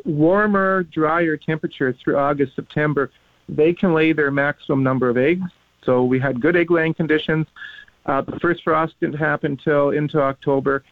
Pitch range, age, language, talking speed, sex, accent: 130-165 Hz, 50-69, English, 160 wpm, male, American